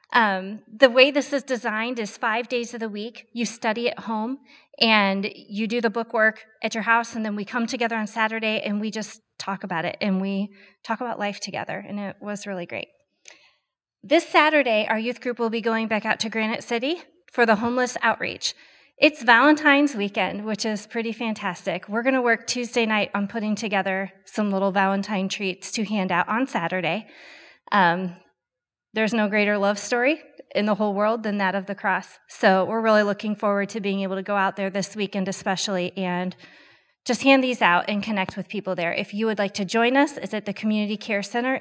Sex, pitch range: female, 200-240 Hz